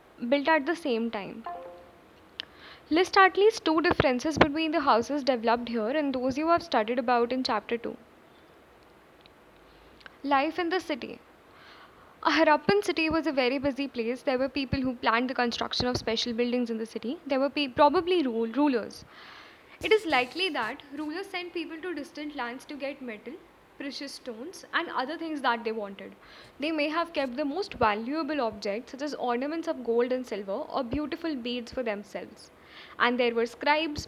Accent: native